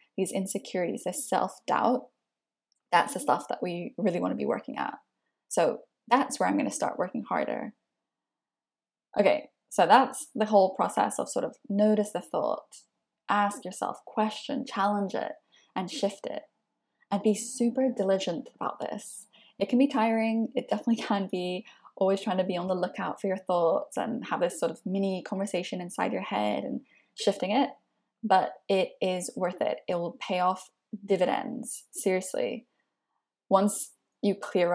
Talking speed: 160 wpm